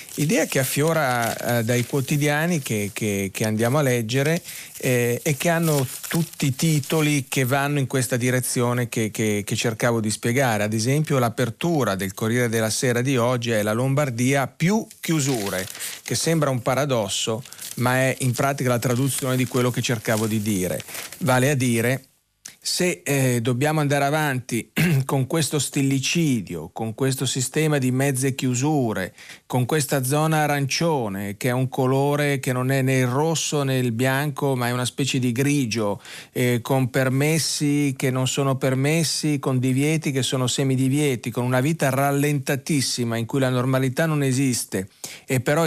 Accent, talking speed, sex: native, 160 wpm, male